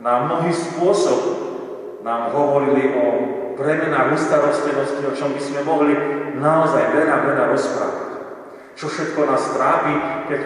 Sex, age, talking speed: male, 30-49, 125 wpm